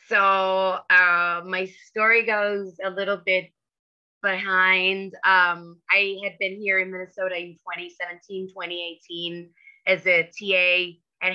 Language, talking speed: English, 120 wpm